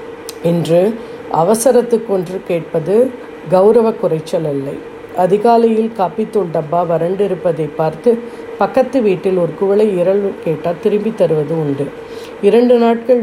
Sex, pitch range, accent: female, 170-235 Hz, native